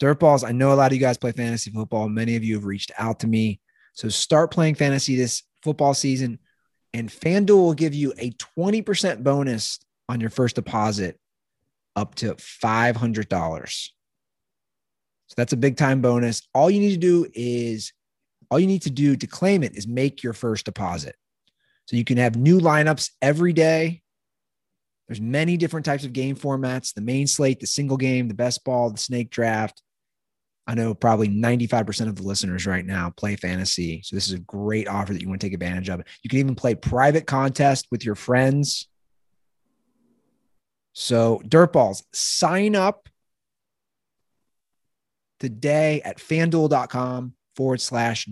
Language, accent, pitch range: English, American, 110-140 Hz